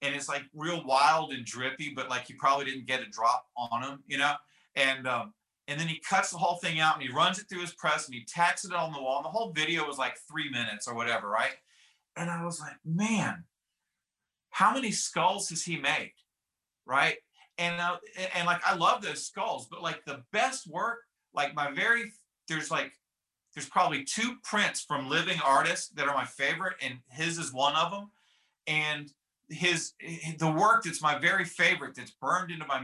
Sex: male